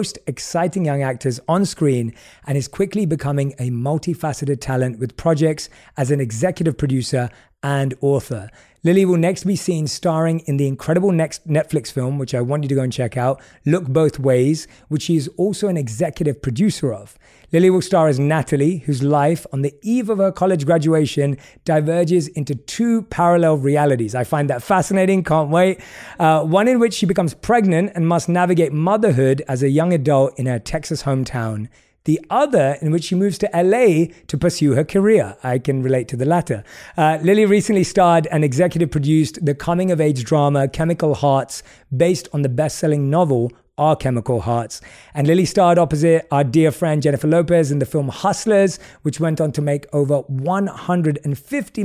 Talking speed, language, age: 180 wpm, English, 30-49